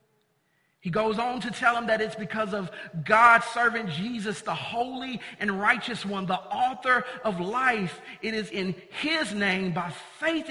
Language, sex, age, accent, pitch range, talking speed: English, male, 40-59, American, 155-200 Hz, 165 wpm